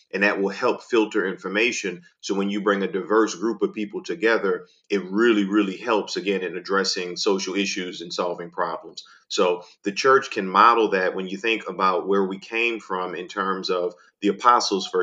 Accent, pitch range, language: American, 95-125 Hz, English